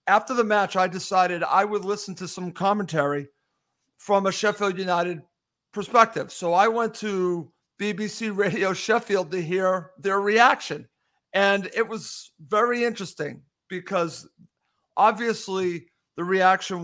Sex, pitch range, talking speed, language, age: male, 170-210 Hz, 130 wpm, English, 50-69